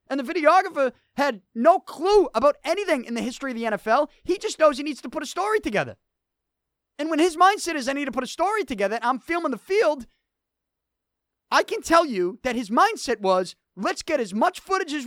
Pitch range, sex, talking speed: 225-330 Hz, male, 215 wpm